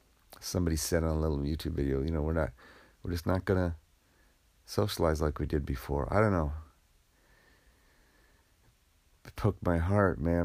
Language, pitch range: English, 70-90 Hz